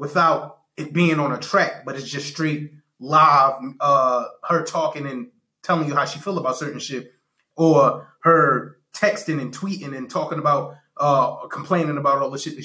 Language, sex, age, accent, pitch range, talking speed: English, male, 20-39, American, 150-195 Hz, 180 wpm